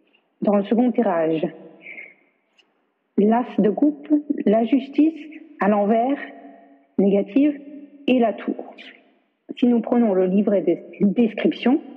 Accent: French